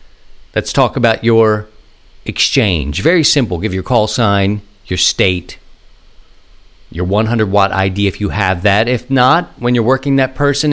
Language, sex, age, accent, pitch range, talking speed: English, male, 50-69, American, 95-130 Hz, 150 wpm